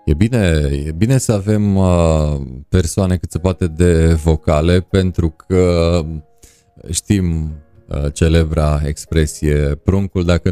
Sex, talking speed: male, 110 wpm